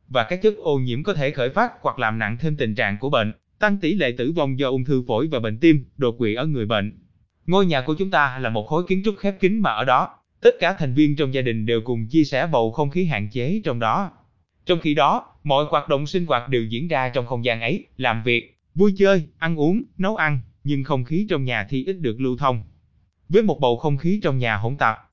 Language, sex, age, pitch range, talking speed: Vietnamese, male, 20-39, 120-165 Hz, 260 wpm